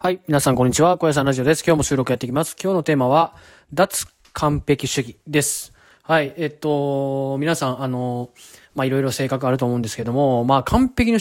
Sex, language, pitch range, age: male, Japanese, 120-155 Hz, 20-39